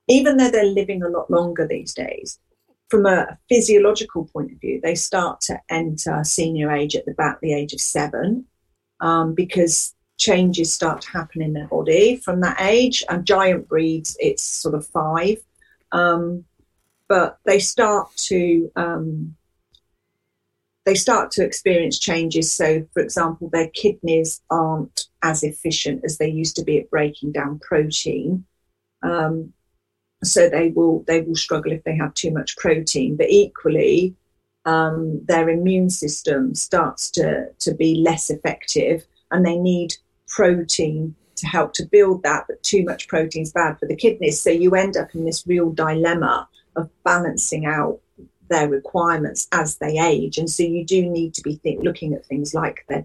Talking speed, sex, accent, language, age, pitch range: 165 wpm, female, British, English, 40-59, 155-185 Hz